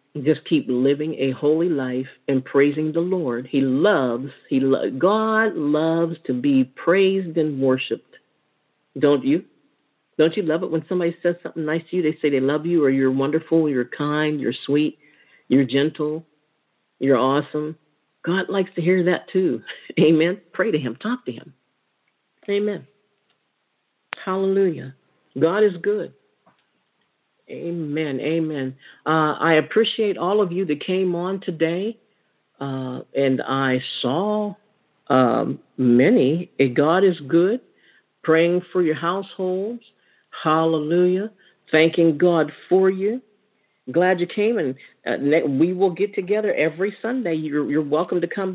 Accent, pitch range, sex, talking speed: American, 145-190 Hz, male, 140 wpm